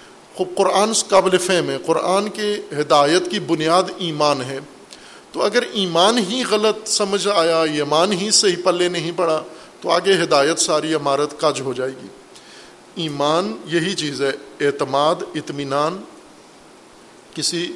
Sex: male